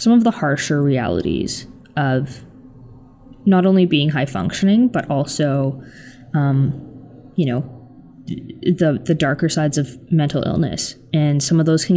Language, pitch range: English, 140-170 Hz